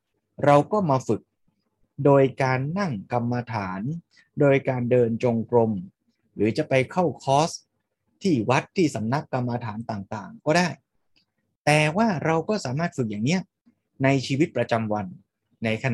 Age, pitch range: 20-39, 120-160 Hz